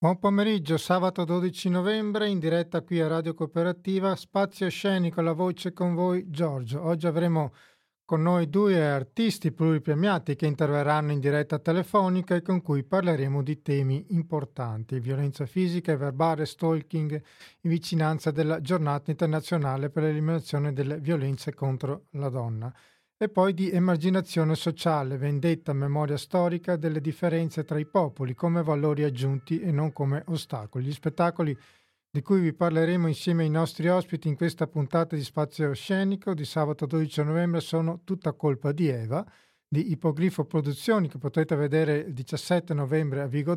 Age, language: 40-59, Italian